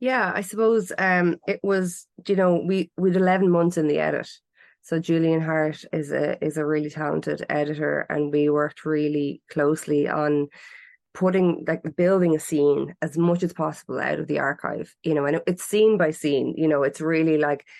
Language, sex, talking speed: English, female, 190 wpm